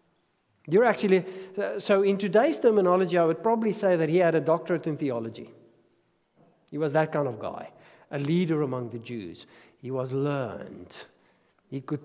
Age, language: 50-69, English